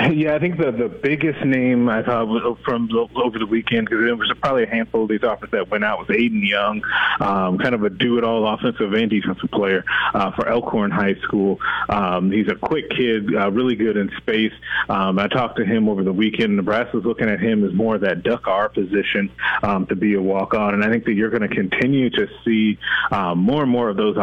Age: 30-49